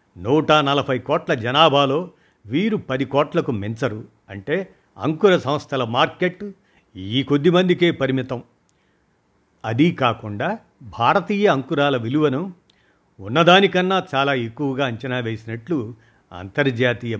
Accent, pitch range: native, 120-155 Hz